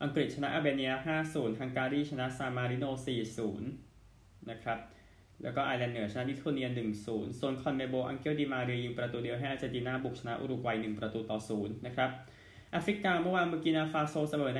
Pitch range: 110-140 Hz